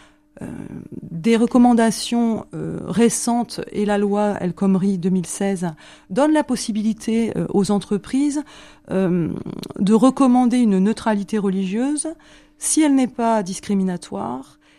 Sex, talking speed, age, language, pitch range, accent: female, 115 wpm, 40-59, French, 180-225 Hz, French